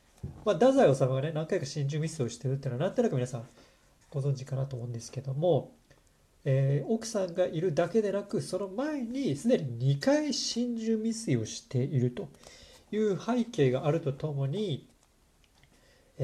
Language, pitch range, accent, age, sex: Japanese, 125-205 Hz, native, 40-59, male